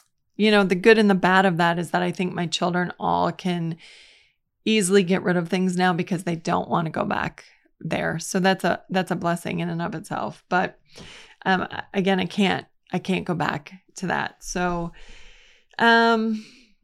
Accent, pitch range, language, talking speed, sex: American, 175-195 Hz, English, 190 wpm, female